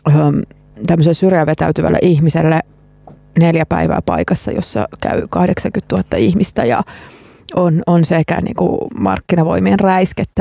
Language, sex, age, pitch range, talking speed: Finnish, female, 30-49, 165-200 Hz, 110 wpm